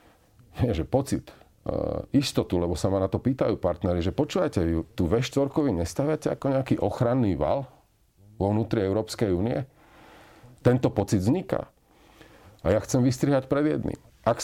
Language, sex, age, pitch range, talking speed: Slovak, male, 40-59, 90-120 Hz, 135 wpm